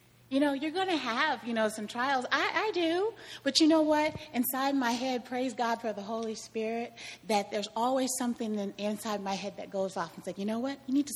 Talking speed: 240 wpm